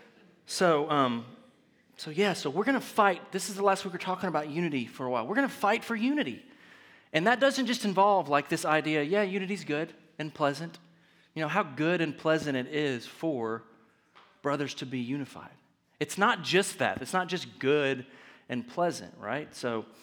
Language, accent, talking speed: English, American, 195 wpm